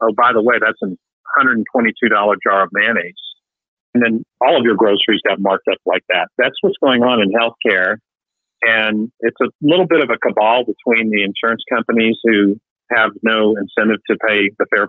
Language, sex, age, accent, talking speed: English, male, 50-69, American, 190 wpm